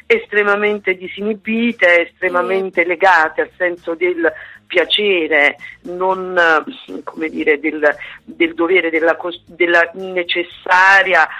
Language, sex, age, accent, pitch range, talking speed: Italian, female, 50-69, native, 170-215 Hz, 90 wpm